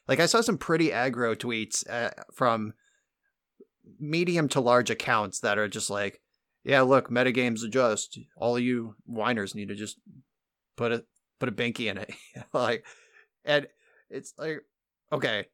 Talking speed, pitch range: 155 wpm, 110-135 Hz